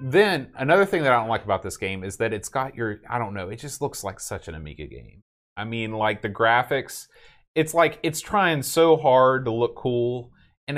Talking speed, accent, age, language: 230 wpm, American, 30-49, English